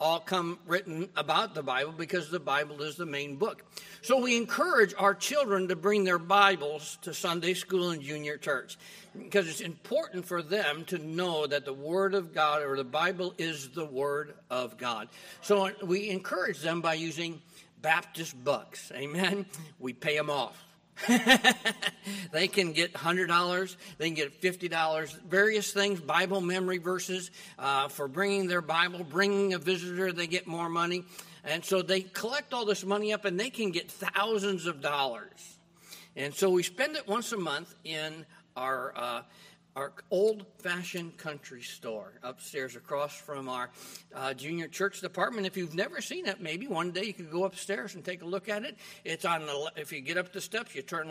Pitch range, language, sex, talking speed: 160-200 Hz, English, male, 180 wpm